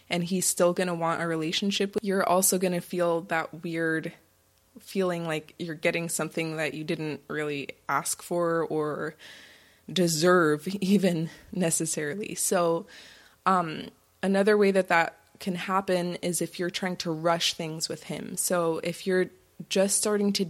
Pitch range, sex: 165-185 Hz, female